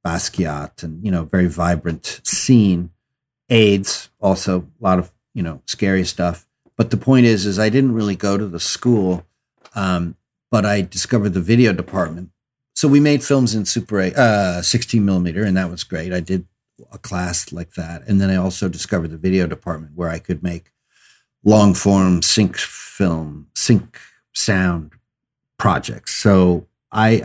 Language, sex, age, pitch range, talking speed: English, male, 50-69, 85-110 Hz, 165 wpm